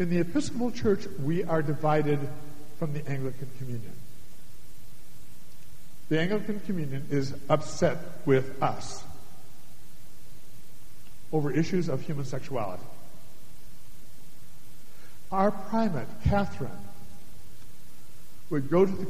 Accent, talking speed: American, 95 wpm